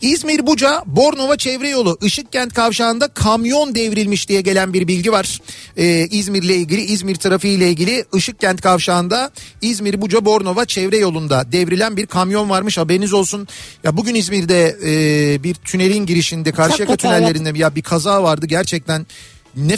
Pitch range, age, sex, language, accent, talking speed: 165-215 Hz, 50-69, male, Turkish, native, 145 wpm